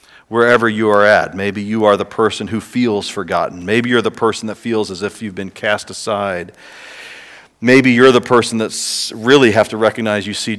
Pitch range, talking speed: 90-110 Hz, 200 wpm